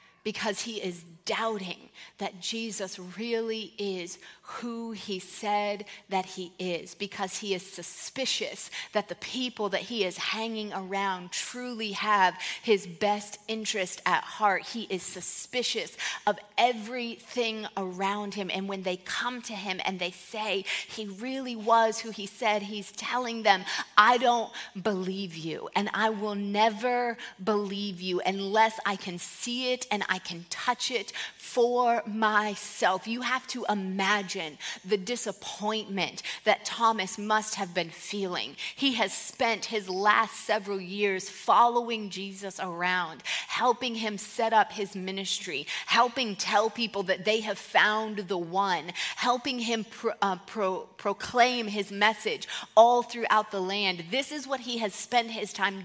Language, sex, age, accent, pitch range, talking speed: English, female, 30-49, American, 195-225 Hz, 145 wpm